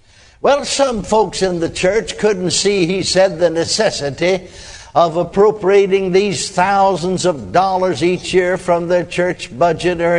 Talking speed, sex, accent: 145 wpm, male, American